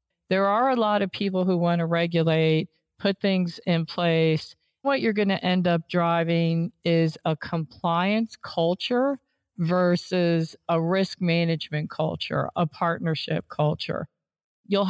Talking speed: 135 wpm